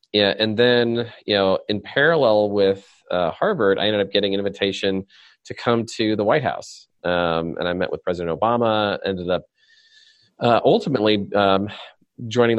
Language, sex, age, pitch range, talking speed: English, male, 30-49, 90-105 Hz, 165 wpm